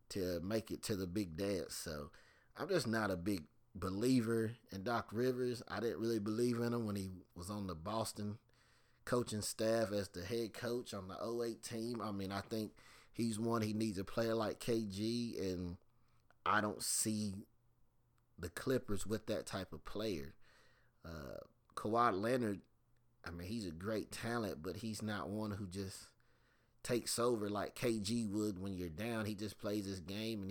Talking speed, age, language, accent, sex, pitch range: 180 wpm, 30-49, English, American, male, 100-120 Hz